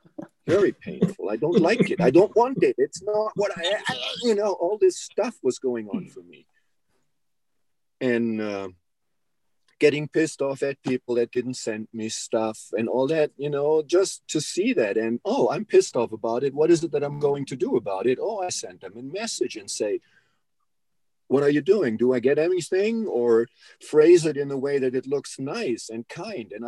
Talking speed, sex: 205 wpm, male